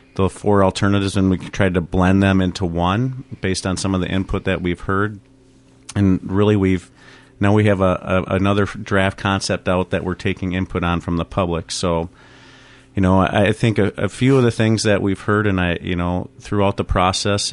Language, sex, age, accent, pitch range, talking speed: English, male, 40-59, American, 90-110 Hz, 210 wpm